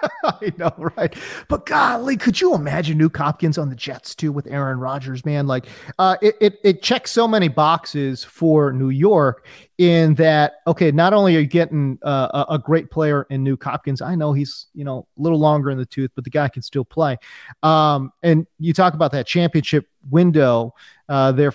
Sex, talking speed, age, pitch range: male, 200 wpm, 30-49, 140-180 Hz